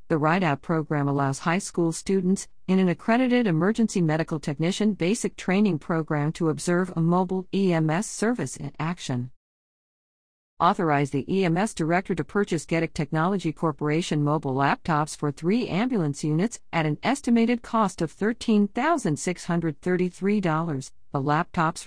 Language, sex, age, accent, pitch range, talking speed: English, female, 50-69, American, 150-195 Hz, 130 wpm